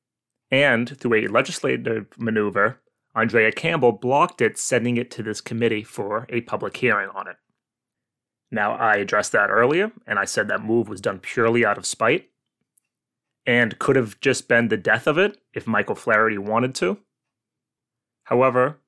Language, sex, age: English, male, 30-49